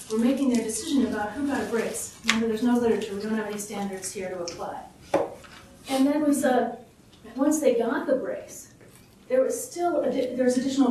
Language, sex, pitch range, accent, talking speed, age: English, female, 215-260 Hz, American, 175 wpm, 30-49